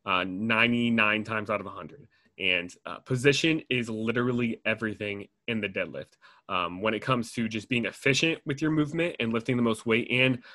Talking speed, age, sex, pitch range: 180 wpm, 30-49, male, 110-135 Hz